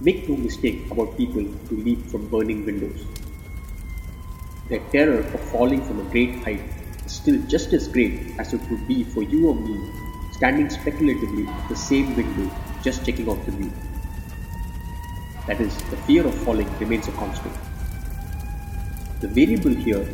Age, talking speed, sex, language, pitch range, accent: 30-49, 160 wpm, male, Tamil, 80-110 Hz, native